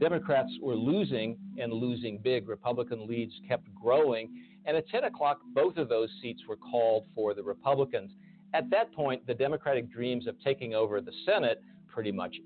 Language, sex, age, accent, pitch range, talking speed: English, male, 50-69, American, 110-160 Hz, 175 wpm